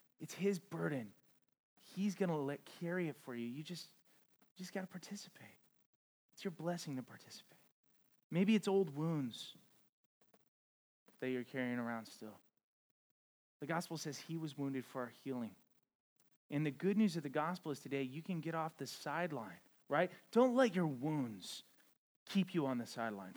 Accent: American